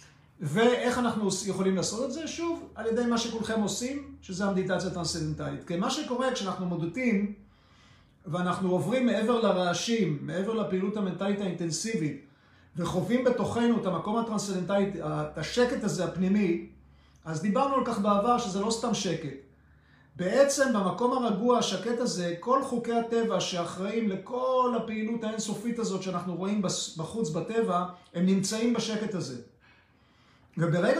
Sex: male